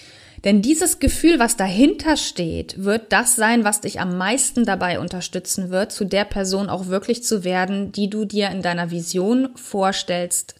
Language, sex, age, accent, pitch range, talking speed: German, female, 20-39, German, 185-235 Hz, 170 wpm